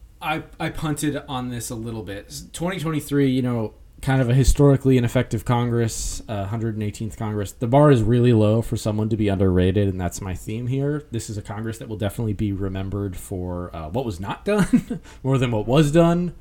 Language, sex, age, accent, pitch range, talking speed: English, male, 20-39, American, 105-140 Hz, 200 wpm